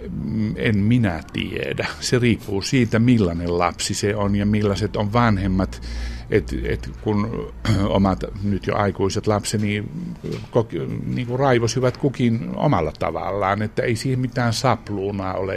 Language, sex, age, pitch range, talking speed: Finnish, male, 60-79, 95-120 Hz, 130 wpm